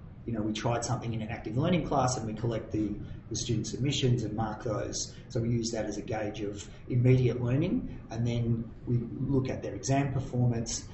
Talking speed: 210 wpm